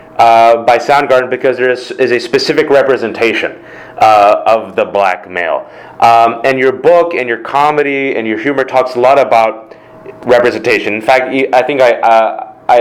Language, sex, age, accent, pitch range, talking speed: English, male, 30-49, American, 120-155 Hz, 165 wpm